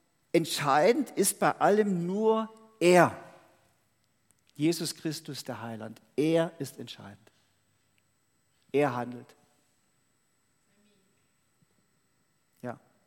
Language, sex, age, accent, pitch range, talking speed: German, male, 50-69, German, 130-170 Hz, 75 wpm